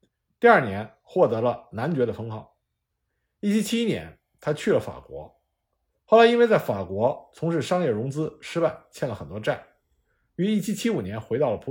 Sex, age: male, 50-69